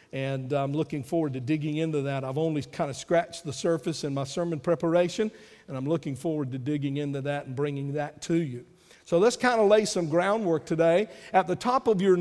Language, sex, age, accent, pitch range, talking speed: English, male, 50-69, American, 165-220 Hz, 220 wpm